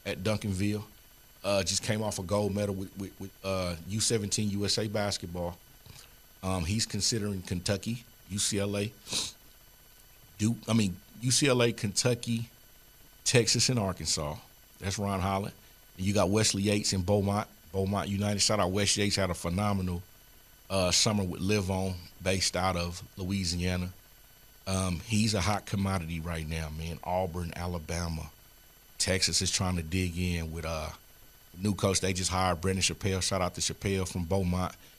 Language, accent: English, American